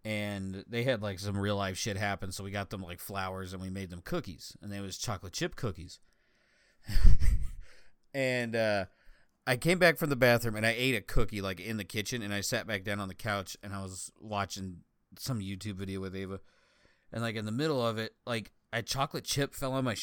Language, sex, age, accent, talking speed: English, male, 30-49, American, 220 wpm